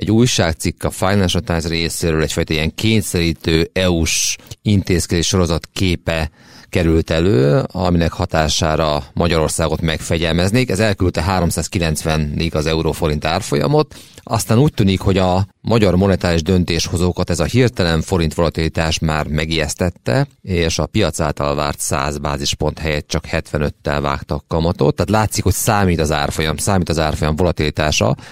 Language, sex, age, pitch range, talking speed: Hungarian, male, 30-49, 80-95 Hz, 130 wpm